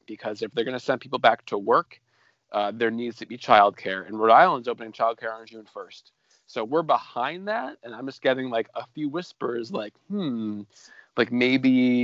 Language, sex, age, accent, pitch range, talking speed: English, male, 30-49, American, 105-125 Hz, 200 wpm